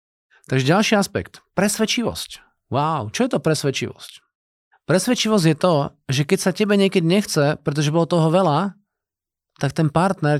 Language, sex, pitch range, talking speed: Slovak, male, 140-175 Hz, 145 wpm